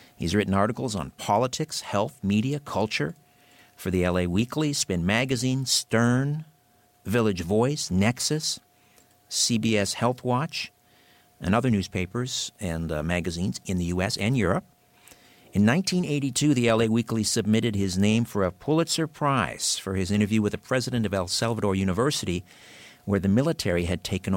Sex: male